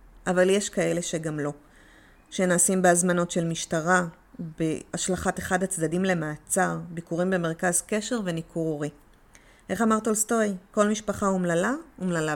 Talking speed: 120 wpm